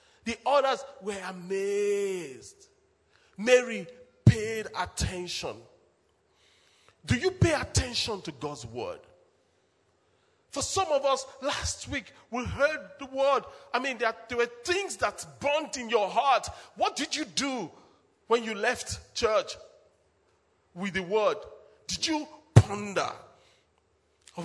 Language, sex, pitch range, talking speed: English, male, 175-275 Hz, 125 wpm